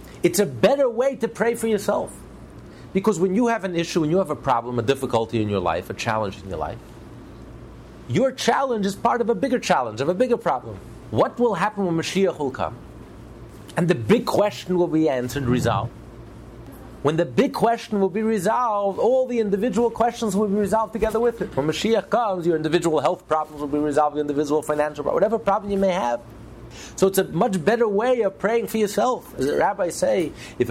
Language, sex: English, male